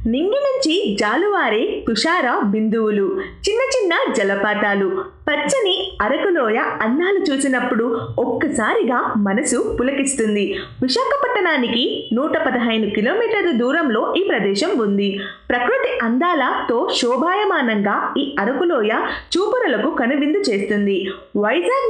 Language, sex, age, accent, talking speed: Telugu, female, 20-39, native, 85 wpm